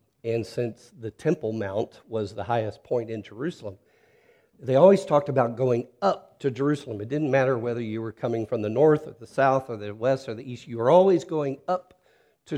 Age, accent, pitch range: 50-69, American, 105-135 Hz